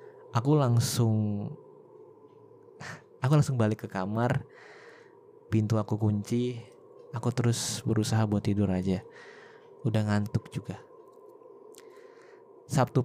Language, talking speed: Indonesian, 90 wpm